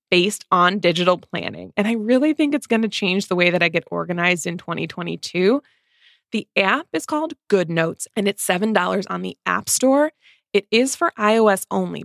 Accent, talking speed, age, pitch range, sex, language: American, 185 wpm, 20-39, 180-225 Hz, female, English